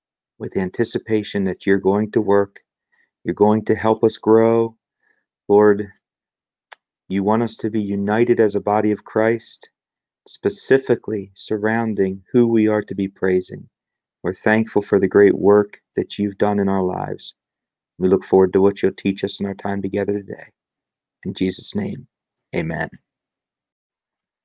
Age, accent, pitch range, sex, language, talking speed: 40-59, American, 95-110 Hz, male, English, 150 wpm